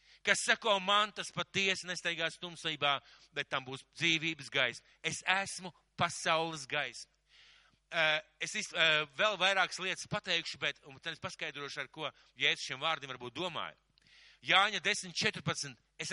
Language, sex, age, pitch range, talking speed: Bengali, male, 50-69, 150-190 Hz, 140 wpm